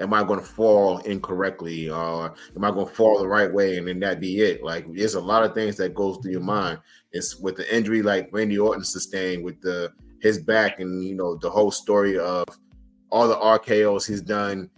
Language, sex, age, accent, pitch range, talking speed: English, male, 20-39, American, 90-110 Hz, 225 wpm